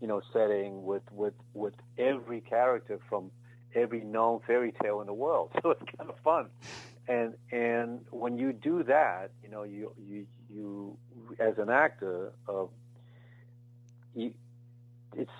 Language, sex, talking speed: English, male, 150 wpm